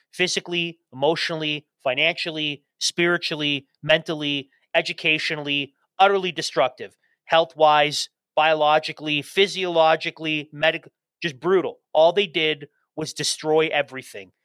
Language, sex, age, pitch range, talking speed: English, male, 30-49, 140-175 Hz, 85 wpm